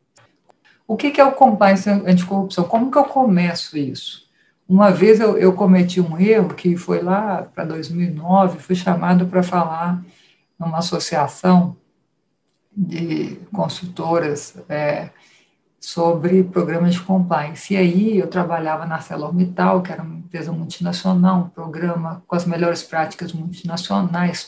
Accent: Brazilian